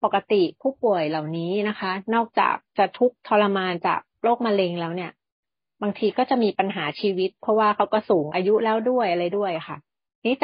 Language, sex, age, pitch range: Thai, female, 30-49, 175-215 Hz